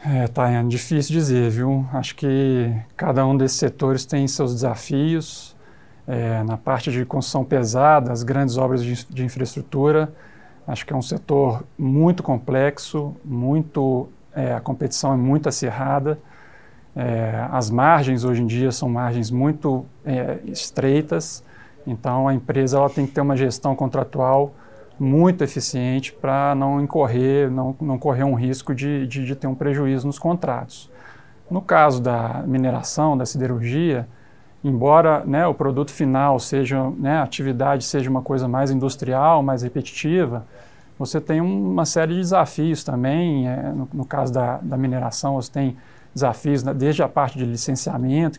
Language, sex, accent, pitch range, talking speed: Portuguese, male, Brazilian, 125-145 Hz, 155 wpm